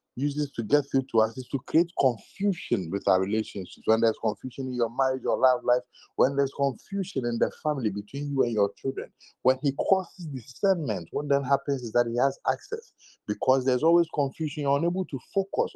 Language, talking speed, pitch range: English, 200 wpm, 130-175 Hz